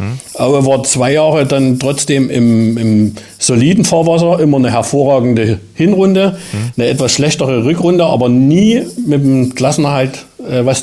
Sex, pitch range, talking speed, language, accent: male, 115-140 Hz, 135 wpm, German, German